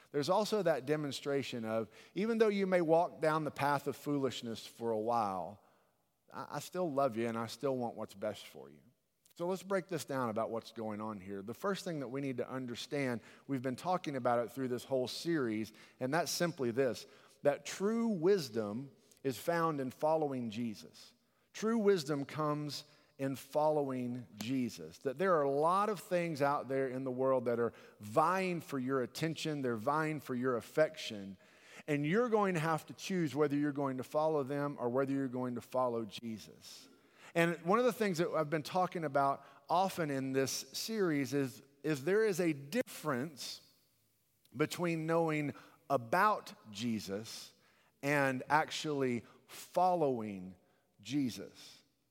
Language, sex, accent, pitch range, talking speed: English, male, American, 125-160 Hz, 170 wpm